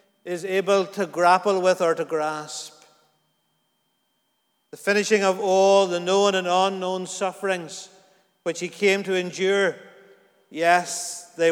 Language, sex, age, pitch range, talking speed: English, male, 50-69, 175-210 Hz, 125 wpm